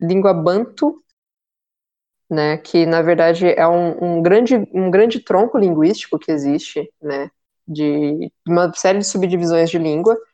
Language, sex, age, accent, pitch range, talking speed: Portuguese, female, 20-39, Brazilian, 170-230 Hz, 140 wpm